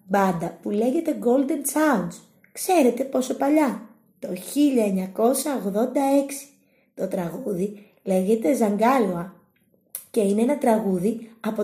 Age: 20-39